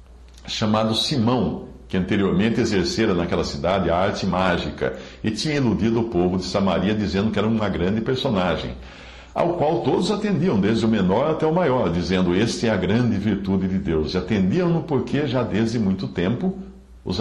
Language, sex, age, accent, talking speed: English, male, 60-79, Brazilian, 175 wpm